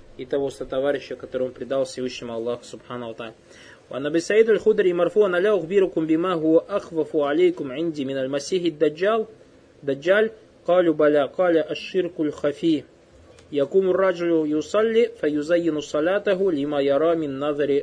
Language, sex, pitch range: Russian, male, 145-185 Hz